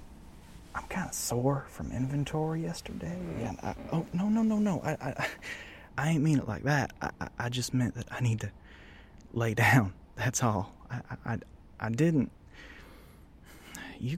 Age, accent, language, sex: 20-39, American, English, male